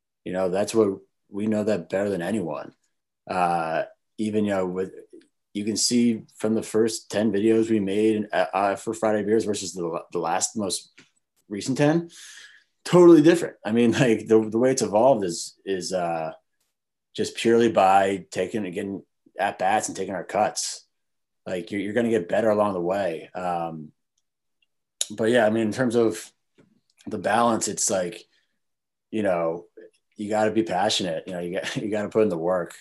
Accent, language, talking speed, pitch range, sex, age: American, English, 185 wpm, 95-110 Hz, male, 30-49